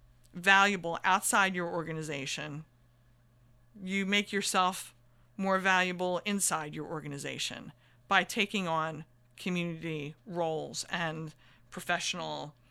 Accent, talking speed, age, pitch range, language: American, 90 wpm, 40-59, 165-205 Hz, English